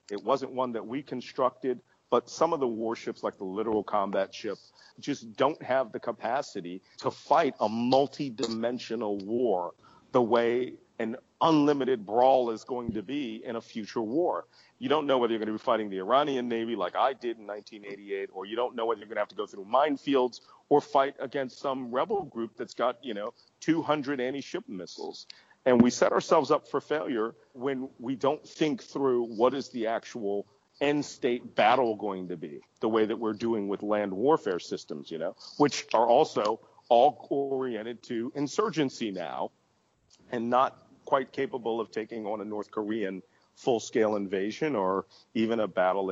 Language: English